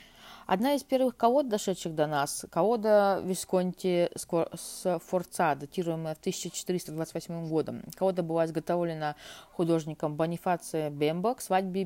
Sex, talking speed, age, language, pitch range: female, 105 wpm, 20-39, Russian, 160-195 Hz